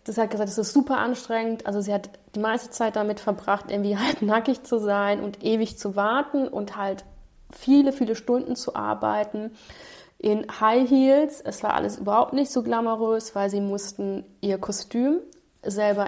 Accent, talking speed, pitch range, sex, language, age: German, 175 wpm, 195-240 Hz, female, German, 30-49